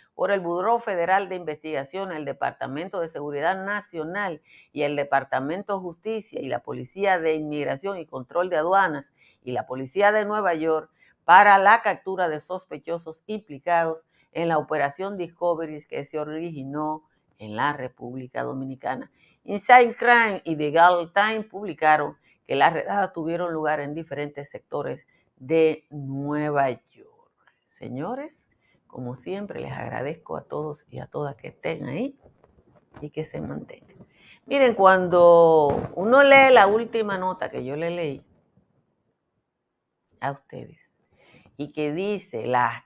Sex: female